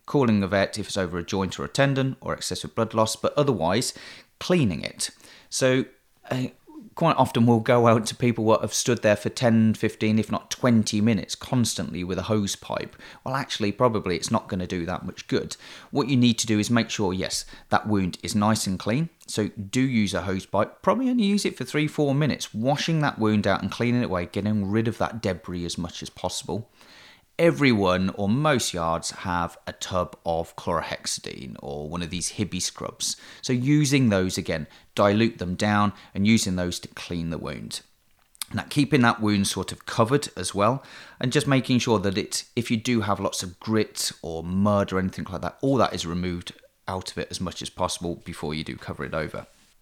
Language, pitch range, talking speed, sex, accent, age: English, 95-125 Hz, 210 wpm, male, British, 30-49